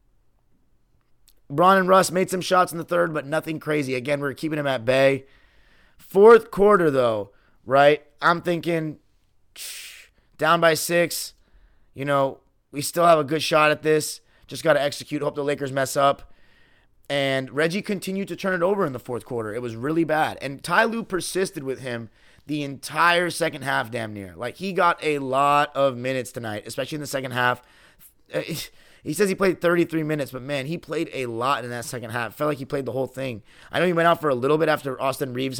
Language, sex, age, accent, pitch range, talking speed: English, male, 30-49, American, 130-170 Hz, 205 wpm